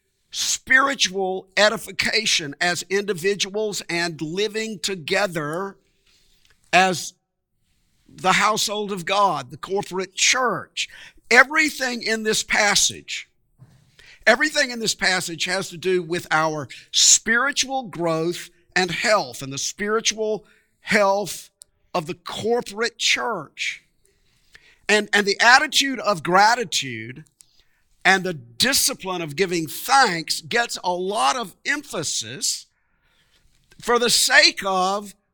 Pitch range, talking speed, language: 170-220 Hz, 105 wpm, English